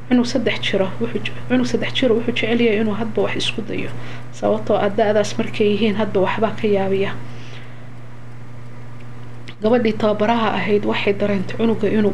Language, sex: English, female